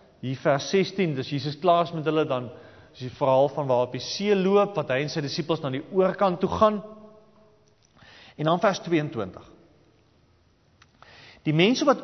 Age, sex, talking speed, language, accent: 40-59, male, 170 wpm, English, Dutch